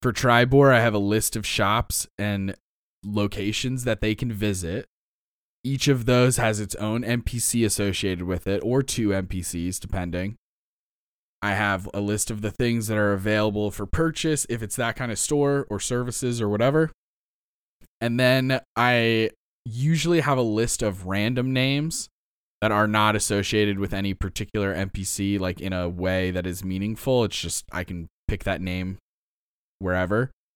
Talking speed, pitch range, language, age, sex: 165 wpm, 95-115 Hz, English, 20-39, male